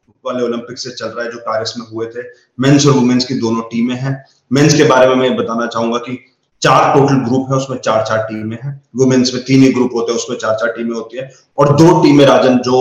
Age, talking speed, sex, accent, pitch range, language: 30-49, 150 wpm, male, native, 115-140 Hz, Hindi